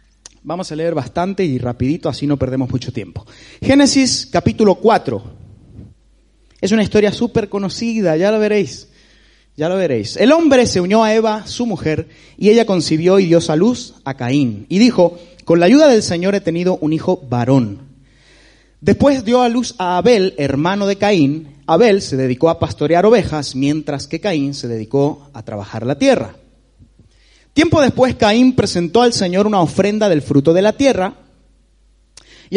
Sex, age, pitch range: male, 30-49, 140-215 Hz